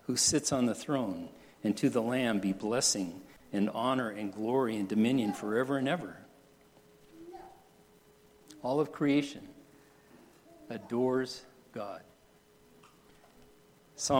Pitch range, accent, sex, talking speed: 120-160 Hz, American, male, 110 wpm